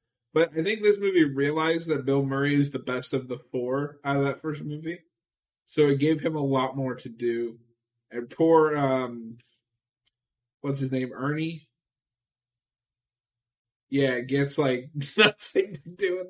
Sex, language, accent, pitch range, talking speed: male, English, American, 120-170 Hz, 160 wpm